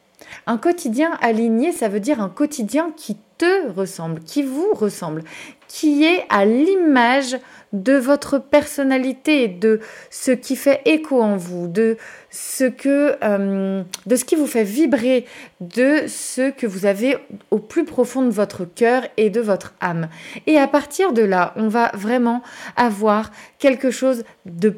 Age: 30-49